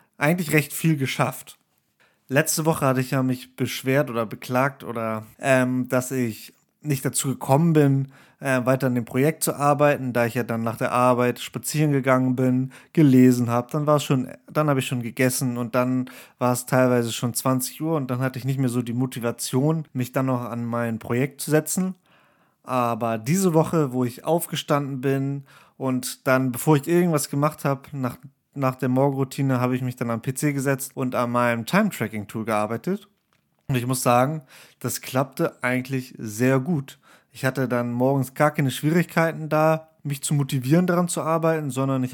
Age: 30-49